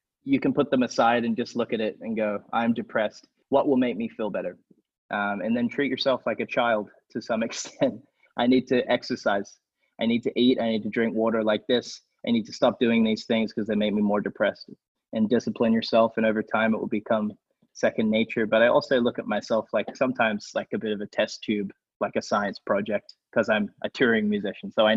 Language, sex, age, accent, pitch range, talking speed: English, male, 20-39, American, 110-150 Hz, 230 wpm